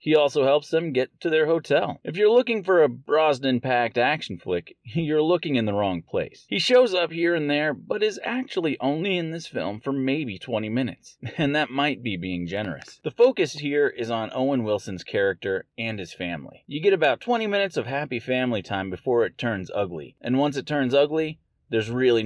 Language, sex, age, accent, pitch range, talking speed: English, male, 30-49, American, 115-160 Hz, 205 wpm